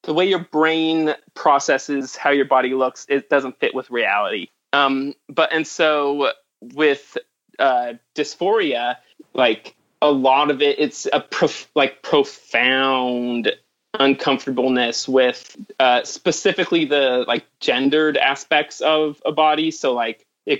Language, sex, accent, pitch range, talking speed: English, male, American, 130-155 Hz, 130 wpm